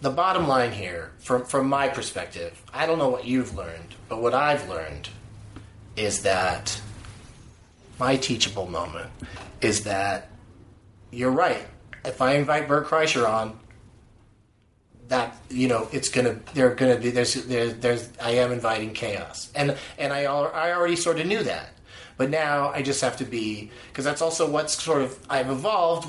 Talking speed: 165 wpm